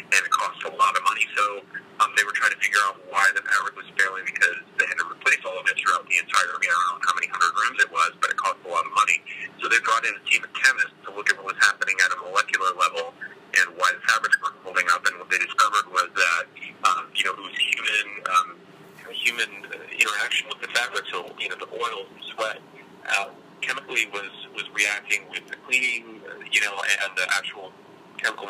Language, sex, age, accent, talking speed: English, male, 30-49, American, 235 wpm